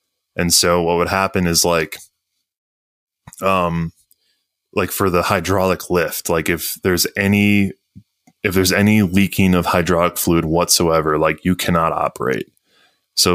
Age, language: 20-39, English